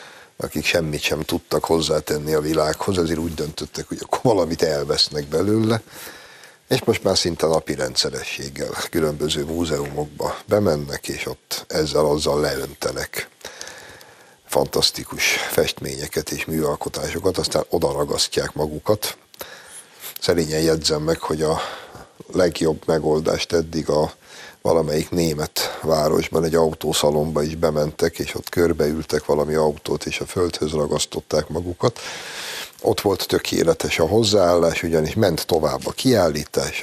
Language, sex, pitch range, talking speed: Hungarian, male, 75-100 Hz, 115 wpm